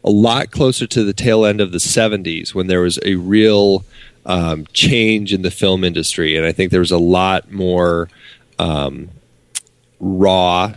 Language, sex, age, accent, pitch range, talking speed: English, male, 30-49, American, 85-100 Hz, 175 wpm